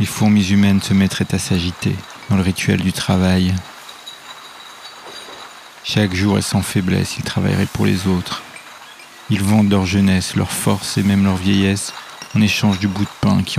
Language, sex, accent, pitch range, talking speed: French, male, French, 95-105 Hz, 170 wpm